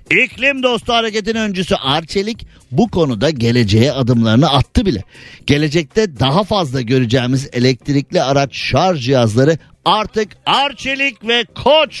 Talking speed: 115 wpm